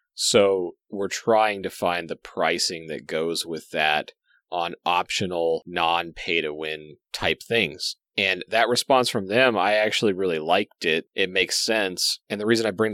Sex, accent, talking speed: male, American, 160 wpm